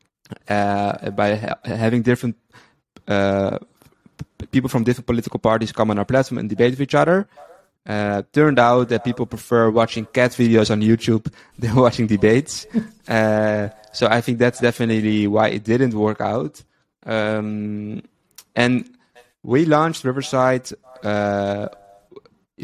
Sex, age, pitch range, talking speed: male, 20-39, 105-125 Hz, 140 wpm